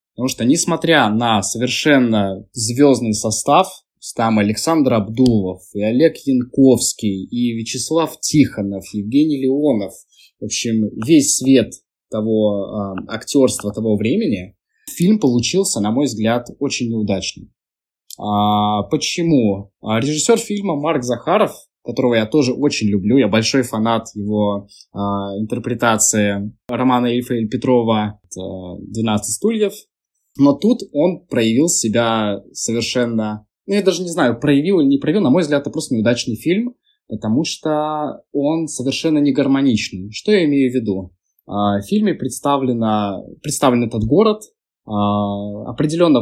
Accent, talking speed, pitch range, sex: native, 125 wpm, 105-145 Hz, male